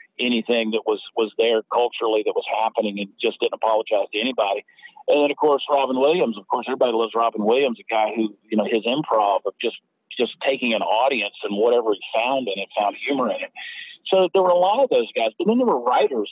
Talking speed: 230 wpm